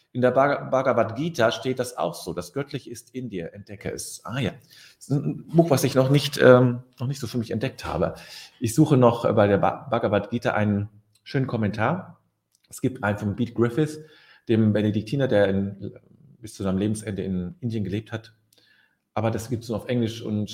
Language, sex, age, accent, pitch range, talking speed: German, male, 40-59, German, 105-135 Hz, 205 wpm